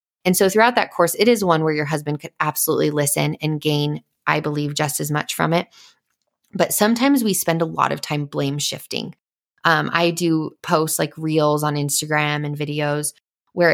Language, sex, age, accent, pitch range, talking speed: English, female, 20-39, American, 150-175 Hz, 190 wpm